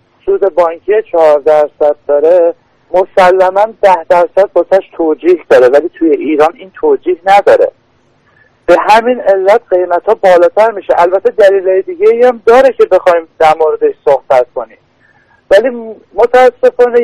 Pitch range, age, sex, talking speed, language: 165-240 Hz, 50-69, male, 120 wpm, Persian